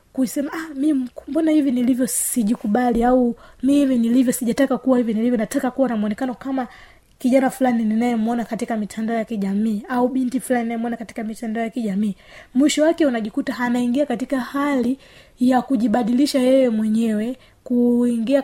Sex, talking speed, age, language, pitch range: female, 150 wpm, 20-39, Swahili, 225-255 Hz